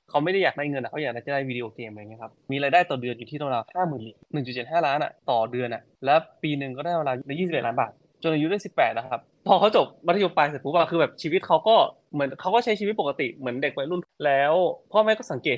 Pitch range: 125-165 Hz